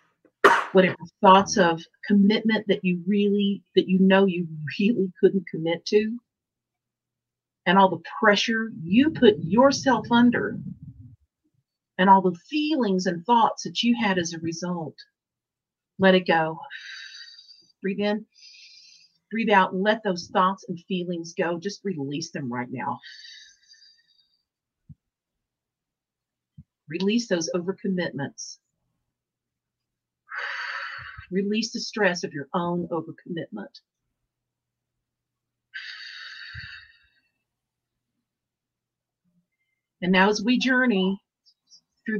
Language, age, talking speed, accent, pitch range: English, 50-69, 100 wpm, American, 170-215 Hz